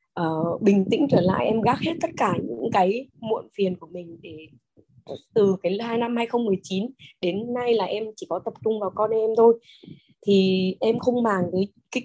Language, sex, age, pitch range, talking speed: Vietnamese, female, 20-39, 220-290 Hz, 195 wpm